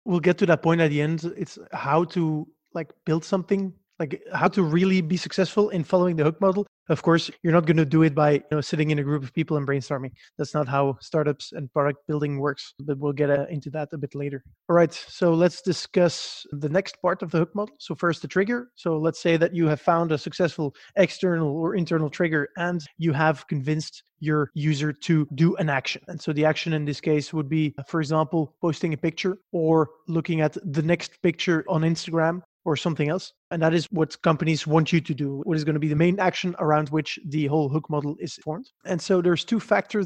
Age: 20-39